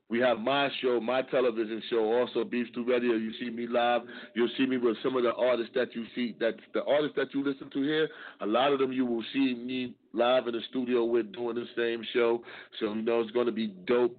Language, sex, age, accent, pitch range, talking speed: English, male, 30-49, American, 110-125 Hz, 245 wpm